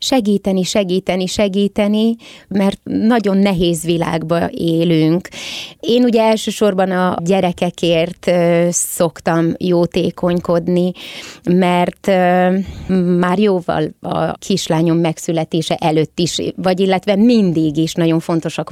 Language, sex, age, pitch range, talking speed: Hungarian, female, 20-39, 170-195 Hz, 95 wpm